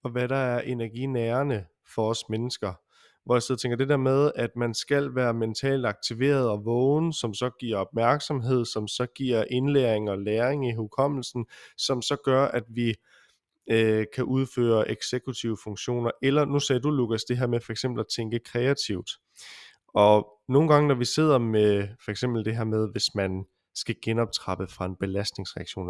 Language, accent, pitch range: Danish, native, 110-135 Hz